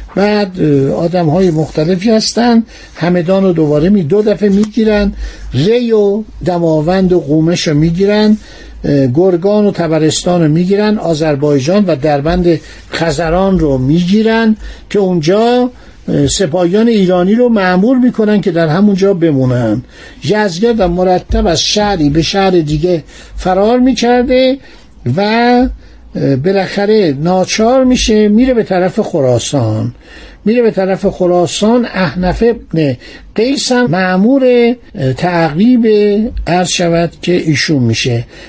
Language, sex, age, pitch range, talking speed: Persian, male, 60-79, 165-220 Hz, 115 wpm